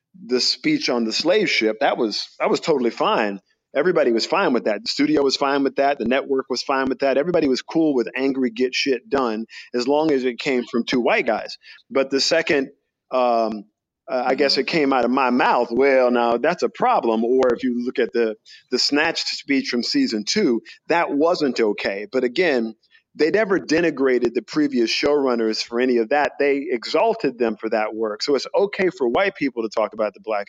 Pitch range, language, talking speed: 115-140 Hz, English, 215 wpm